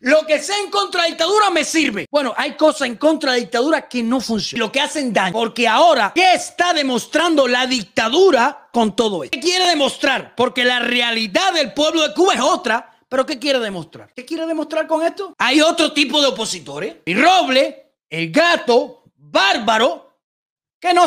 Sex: male